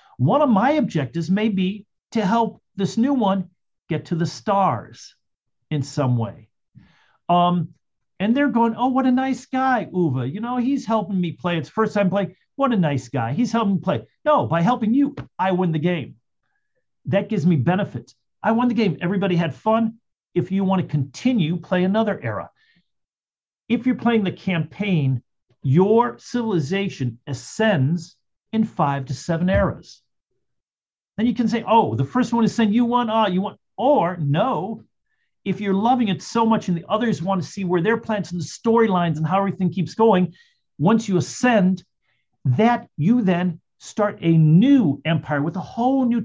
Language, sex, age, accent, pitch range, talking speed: English, male, 50-69, American, 160-225 Hz, 180 wpm